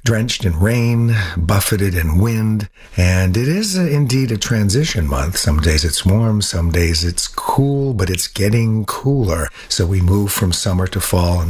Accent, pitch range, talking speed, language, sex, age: American, 90-110 Hz, 170 wpm, English, male, 50-69